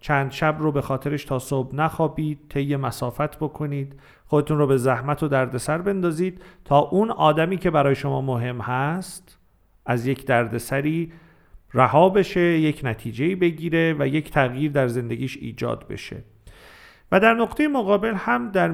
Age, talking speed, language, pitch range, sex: 40-59, 150 wpm, Persian, 130-185 Hz, male